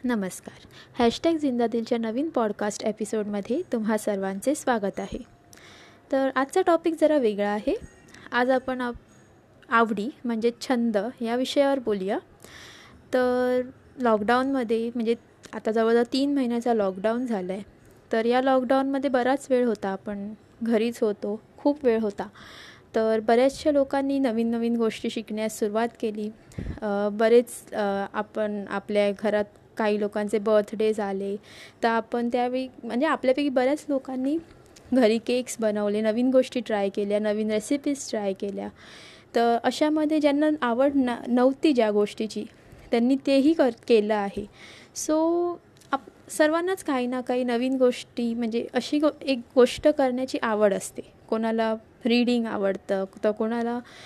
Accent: native